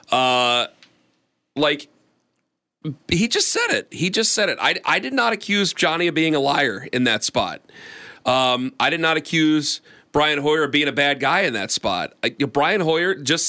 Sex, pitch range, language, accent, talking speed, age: male, 125-160 Hz, English, American, 185 wpm, 40-59